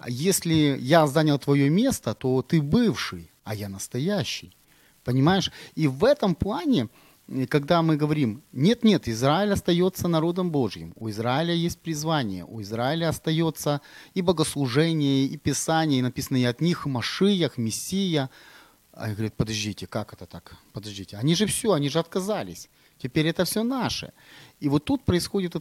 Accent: native